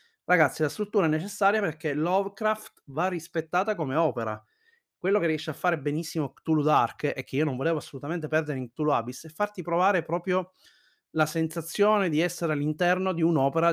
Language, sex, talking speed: Italian, male, 175 wpm